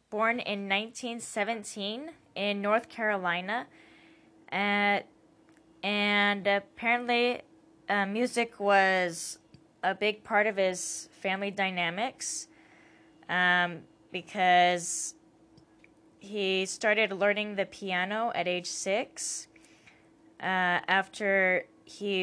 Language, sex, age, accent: English, female, 10-29, American